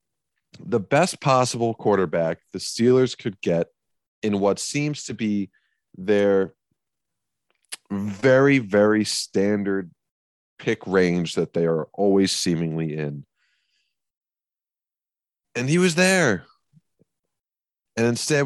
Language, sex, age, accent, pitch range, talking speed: English, male, 30-49, American, 95-120 Hz, 100 wpm